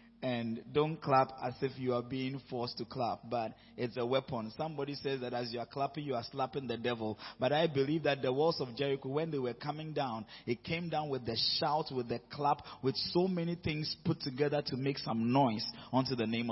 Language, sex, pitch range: English, male, 130-170 Hz